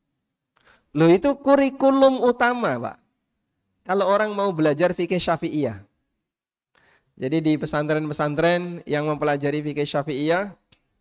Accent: native